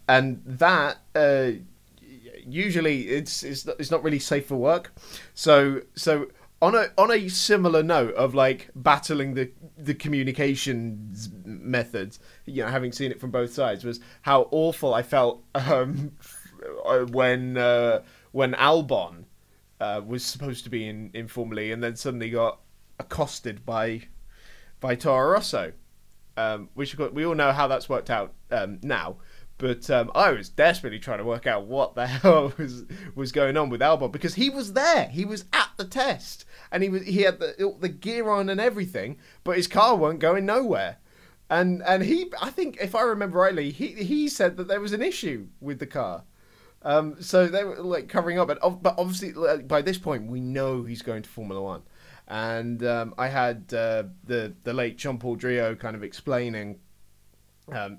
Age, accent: 20-39, British